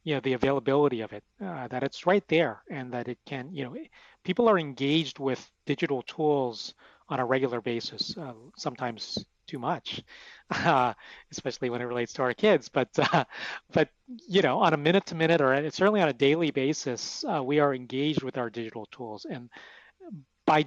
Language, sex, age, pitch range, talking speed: English, male, 40-59, 130-165 Hz, 190 wpm